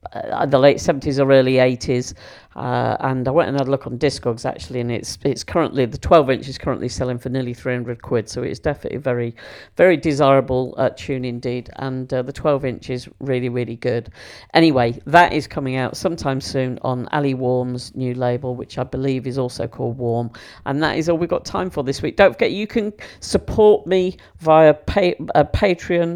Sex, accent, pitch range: female, British, 130-160 Hz